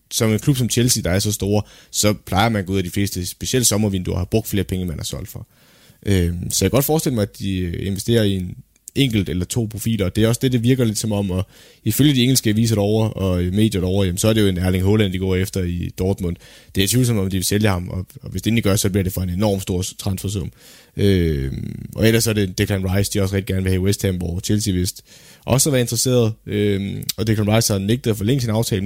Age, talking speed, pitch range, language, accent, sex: 20-39, 280 wpm, 95-115 Hz, Danish, native, male